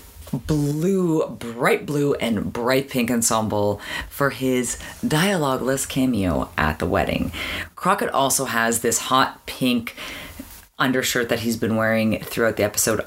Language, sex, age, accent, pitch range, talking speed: English, female, 30-49, American, 110-145 Hz, 130 wpm